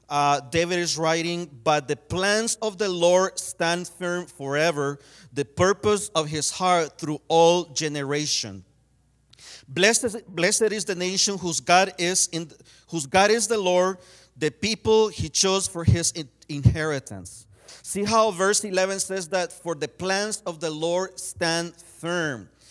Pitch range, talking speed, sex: 150-185 Hz, 145 wpm, male